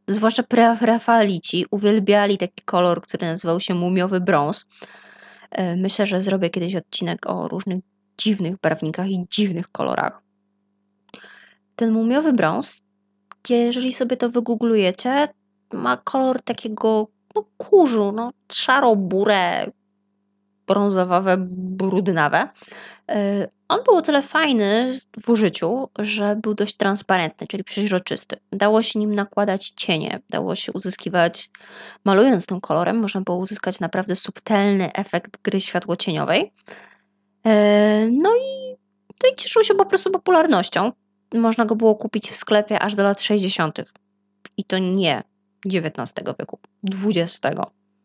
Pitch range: 175-225 Hz